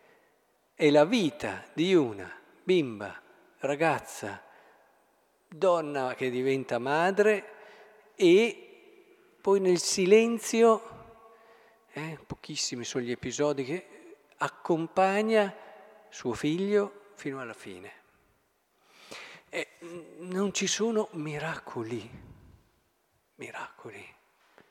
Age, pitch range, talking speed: 50-69, 130-210 Hz, 80 wpm